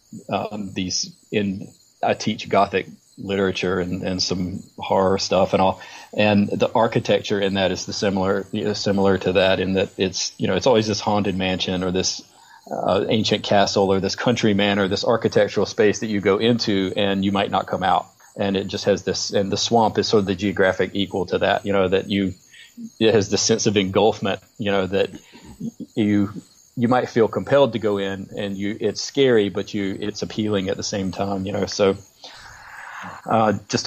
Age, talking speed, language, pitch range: 30-49, 195 wpm, English, 95-105 Hz